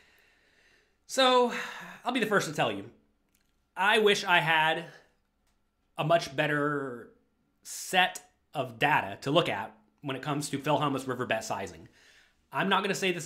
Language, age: English, 30-49